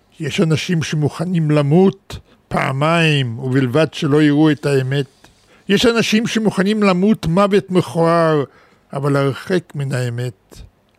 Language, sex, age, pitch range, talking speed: Hebrew, male, 50-69, 150-190 Hz, 110 wpm